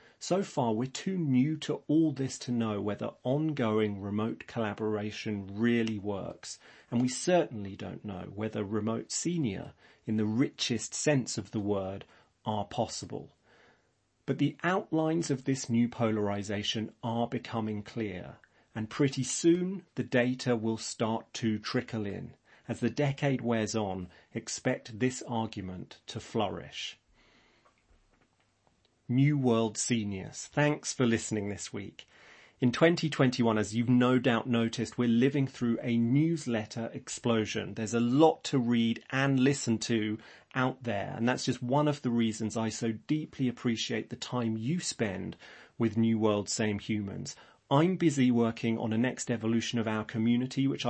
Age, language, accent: 40-59, English, British